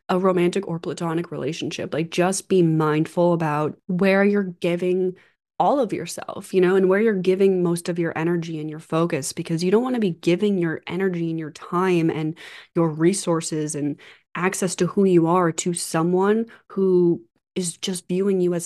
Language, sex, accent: English, female, American